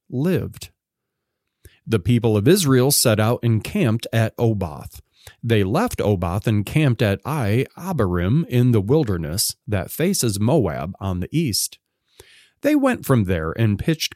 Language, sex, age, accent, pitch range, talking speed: English, male, 40-59, American, 100-135 Hz, 140 wpm